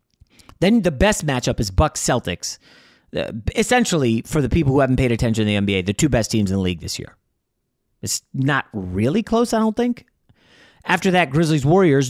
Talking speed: 185 wpm